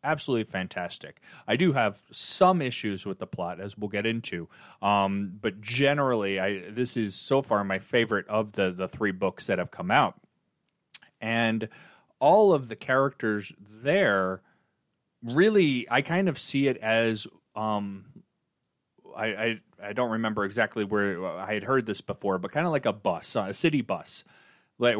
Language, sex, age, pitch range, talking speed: English, male, 30-49, 100-130 Hz, 165 wpm